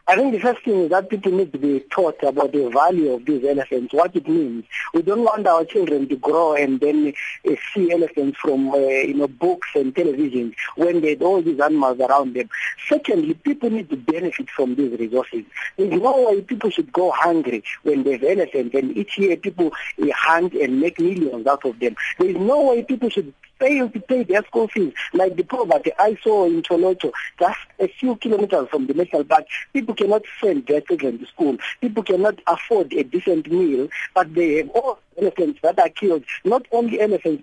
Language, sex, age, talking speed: English, male, 50-69, 205 wpm